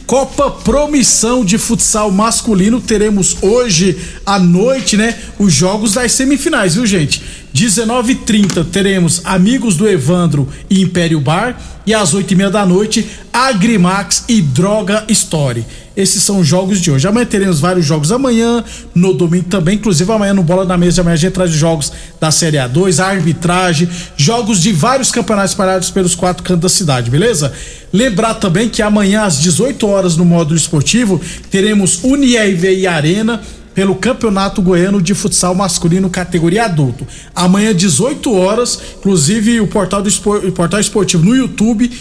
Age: 50-69